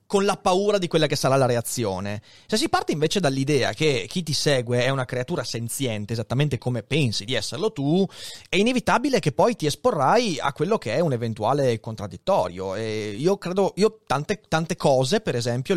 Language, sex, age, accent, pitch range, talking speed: Italian, male, 30-49, native, 125-170 Hz, 190 wpm